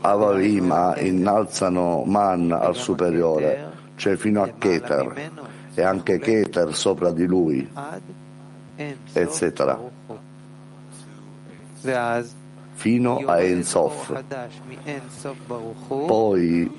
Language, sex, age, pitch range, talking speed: Italian, male, 50-69, 90-125 Hz, 70 wpm